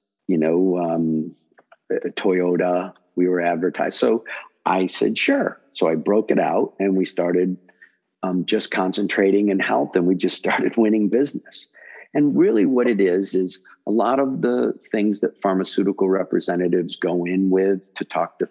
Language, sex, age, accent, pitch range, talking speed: English, male, 50-69, American, 90-110 Hz, 160 wpm